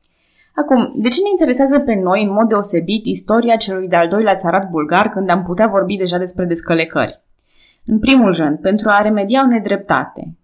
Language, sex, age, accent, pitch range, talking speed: Romanian, female, 20-39, native, 180-240 Hz, 180 wpm